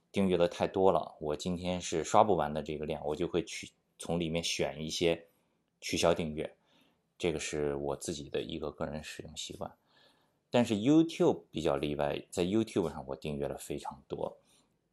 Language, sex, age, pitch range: Chinese, male, 20-39, 75-95 Hz